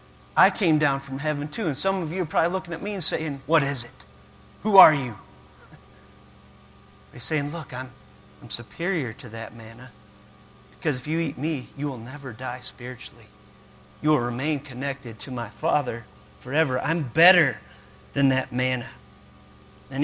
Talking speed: 170 wpm